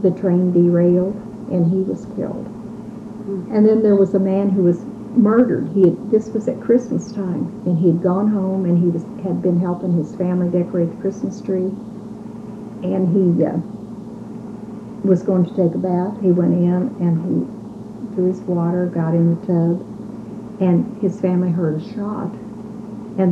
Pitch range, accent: 180-220 Hz, American